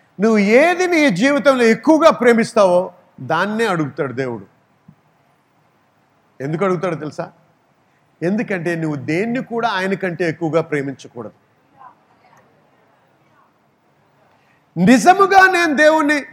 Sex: male